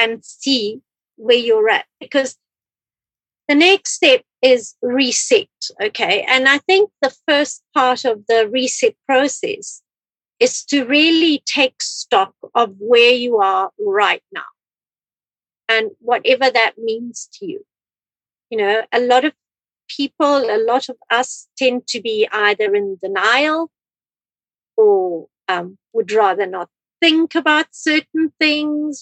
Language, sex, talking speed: English, female, 130 wpm